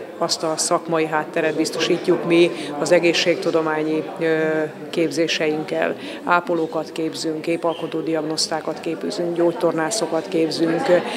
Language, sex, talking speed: Hungarian, female, 80 wpm